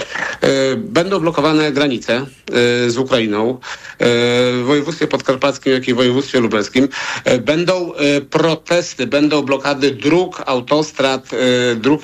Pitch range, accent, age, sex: 135-155 Hz, native, 50-69, male